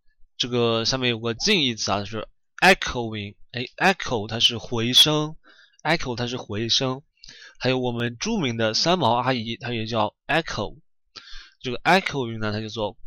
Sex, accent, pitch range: male, native, 115-140 Hz